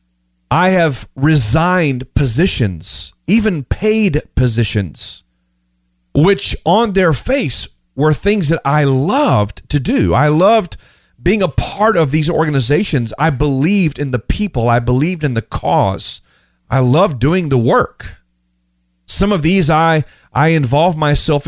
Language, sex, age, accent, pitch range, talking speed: English, male, 40-59, American, 115-180 Hz, 135 wpm